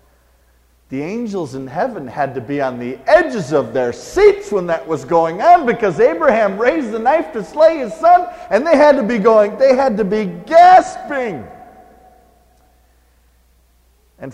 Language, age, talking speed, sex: English, 50-69, 165 wpm, male